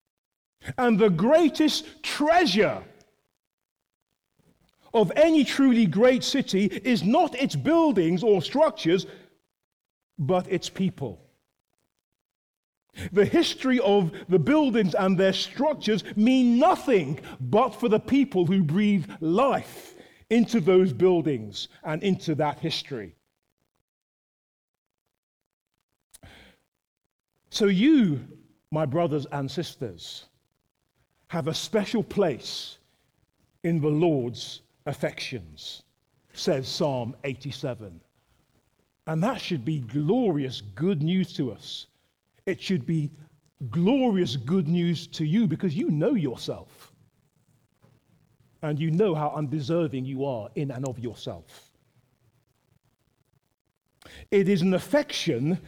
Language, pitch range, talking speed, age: English, 135-215 Hz, 100 wpm, 40-59